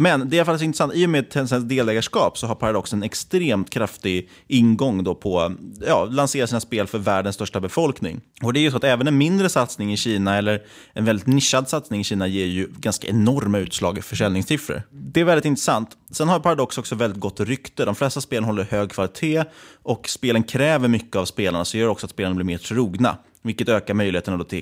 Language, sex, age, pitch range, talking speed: Swedish, male, 20-39, 100-130 Hz, 220 wpm